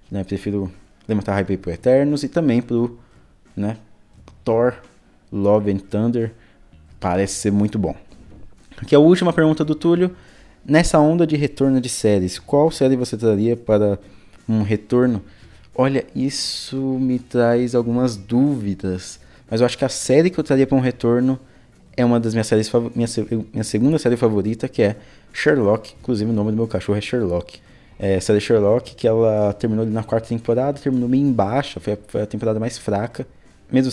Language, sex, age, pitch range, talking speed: Portuguese, male, 20-39, 100-120 Hz, 175 wpm